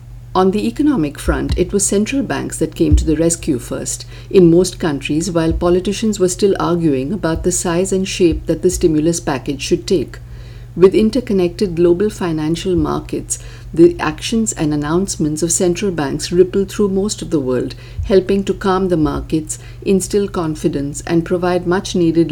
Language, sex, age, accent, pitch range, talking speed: English, female, 50-69, Indian, 145-185 Hz, 165 wpm